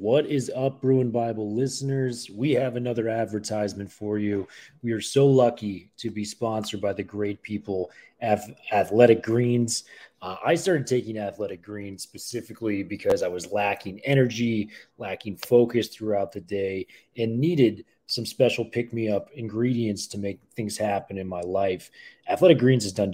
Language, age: English, 30-49